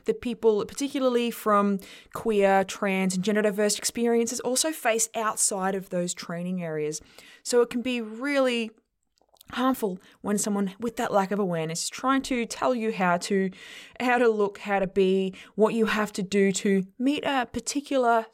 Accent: Australian